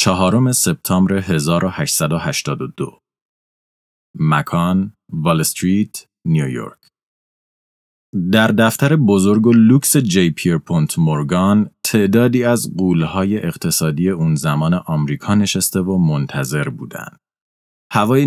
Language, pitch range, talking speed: Persian, 85-120 Hz, 90 wpm